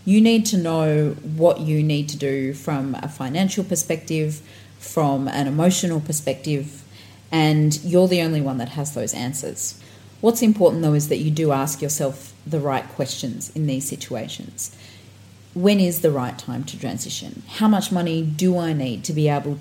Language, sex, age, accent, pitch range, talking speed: English, female, 40-59, Australian, 135-170 Hz, 175 wpm